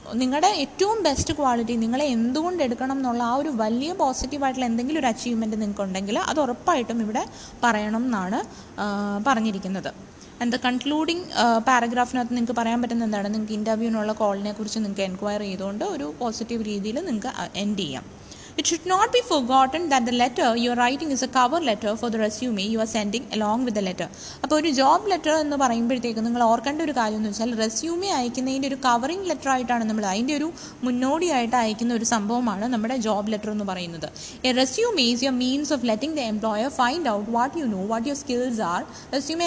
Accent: Indian